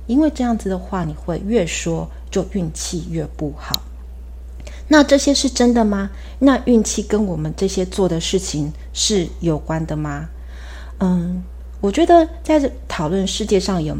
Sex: female